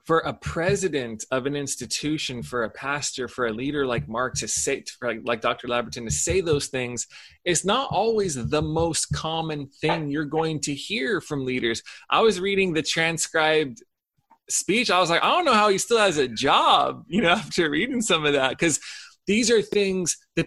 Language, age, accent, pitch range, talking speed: English, 20-39, American, 135-170 Hz, 200 wpm